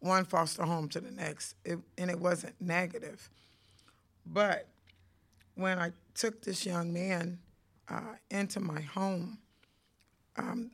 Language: English